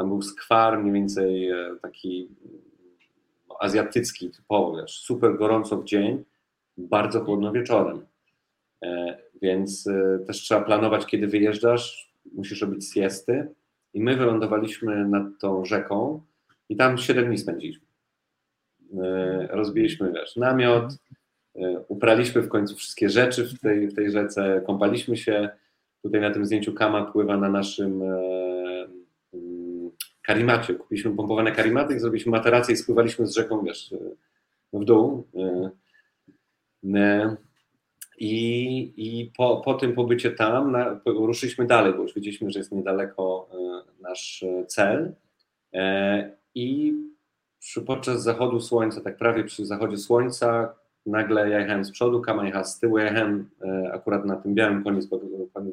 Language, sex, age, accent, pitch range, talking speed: Polish, male, 30-49, native, 100-115 Hz, 125 wpm